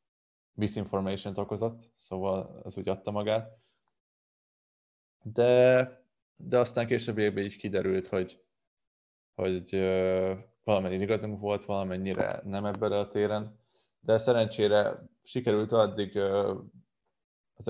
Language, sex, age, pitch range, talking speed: Hungarian, male, 20-39, 95-110 Hz, 95 wpm